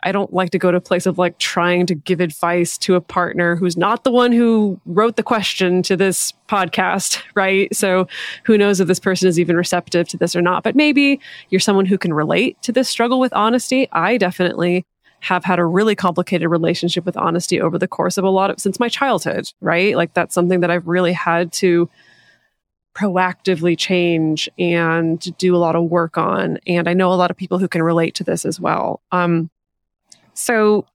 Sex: female